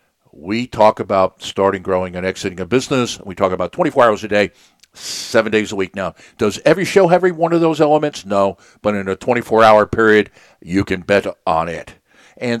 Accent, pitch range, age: American, 95-115 Hz, 60-79